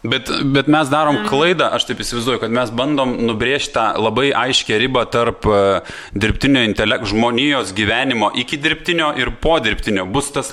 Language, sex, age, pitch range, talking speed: English, male, 20-39, 120-150 Hz, 160 wpm